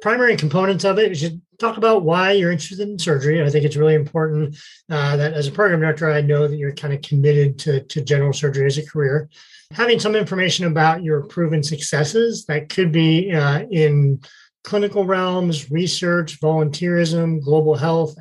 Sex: male